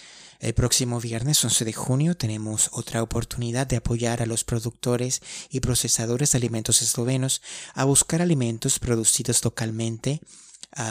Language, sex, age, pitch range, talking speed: Spanish, male, 30-49, 115-125 Hz, 140 wpm